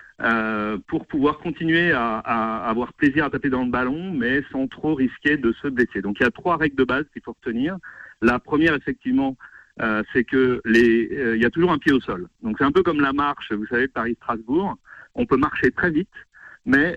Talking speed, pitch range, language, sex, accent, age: 225 wpm, 115-155 Hz, French, male, French, 40-59